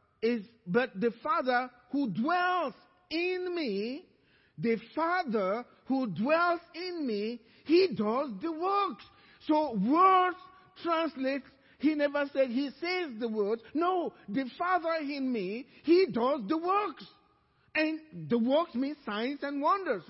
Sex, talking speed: male, 130 wpm